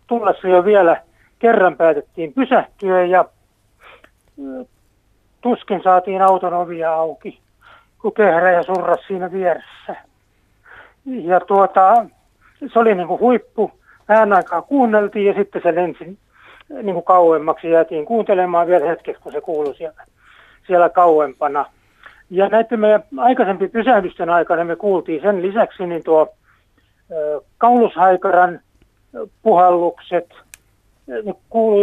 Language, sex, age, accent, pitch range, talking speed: Finnish, male, 60-79, native, 165-210 Hz, 115 wpm